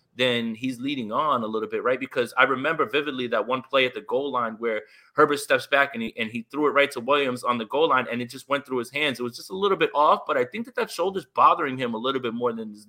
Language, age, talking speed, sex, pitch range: English, 20-39, 300 wpm, male, 115-145 Hz